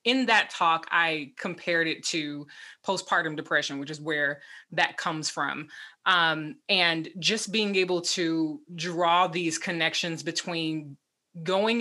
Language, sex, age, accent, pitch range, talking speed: English, female, 20-39, American, 165-215 Hz, 130 wpm